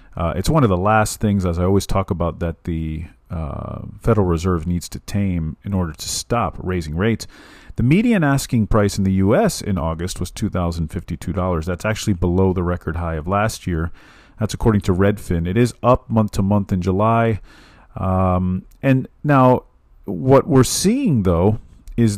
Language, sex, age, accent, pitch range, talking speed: English, male, 40-59, American, 90-115 Hz, 180 wpm